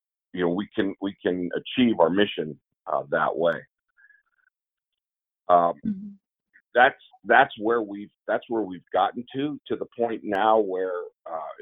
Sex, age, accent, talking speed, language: male, 50-69, American, 145 wpm, English